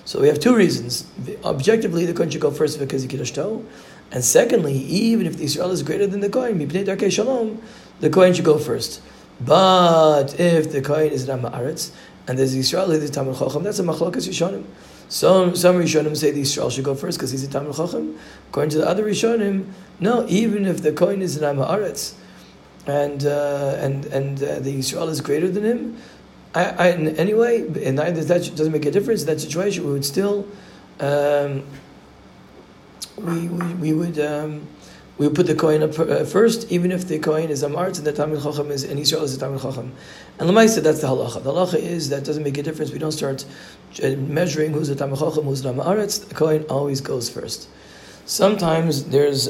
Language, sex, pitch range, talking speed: English, male, 140-180 Hz, 200 wpm